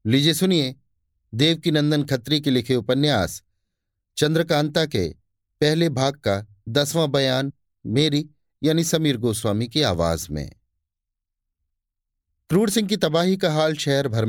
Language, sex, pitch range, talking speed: Hindi, male, 95-145 Hz, 120 wpm